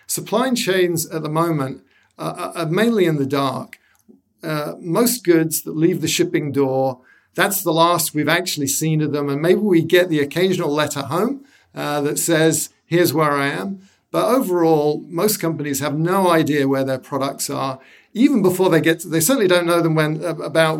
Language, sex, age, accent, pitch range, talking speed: English, male, 50-69, British, 145-175 Hz, 180 wpm